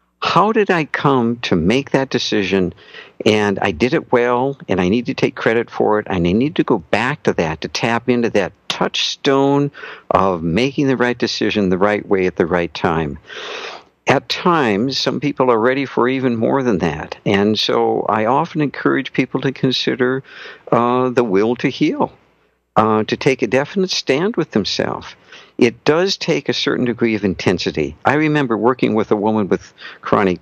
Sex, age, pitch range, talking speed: male, 60-79, 105-130 Hz, 185 wpm